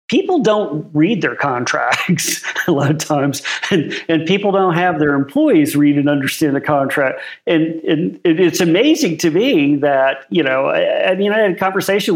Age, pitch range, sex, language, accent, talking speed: 50-69, 145-190 Hz, male, English, American, 185 wpm